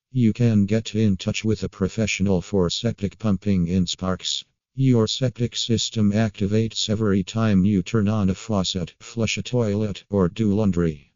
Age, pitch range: 50-69, 95-110 Hz